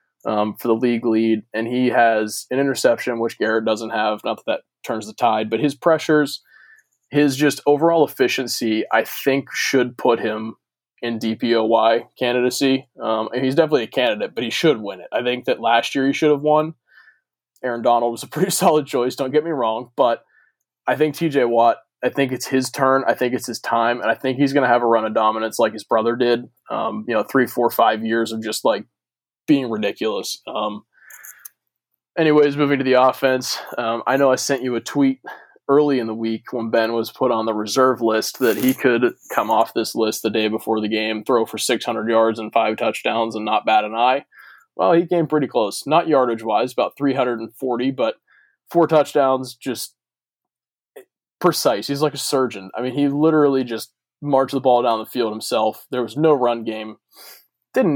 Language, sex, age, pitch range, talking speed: English, male, 20-39, 115-140 Hz, 200 wpm